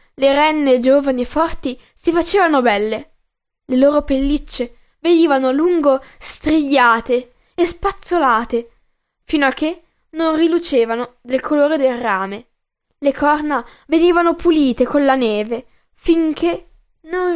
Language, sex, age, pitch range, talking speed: Italian, female, 10-29, 250-330 Hz, 120 wpm